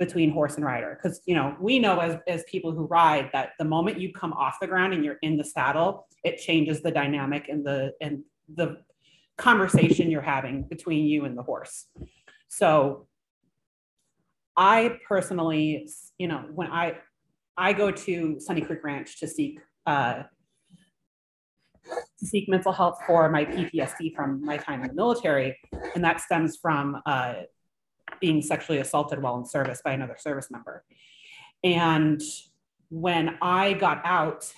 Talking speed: 160 wpm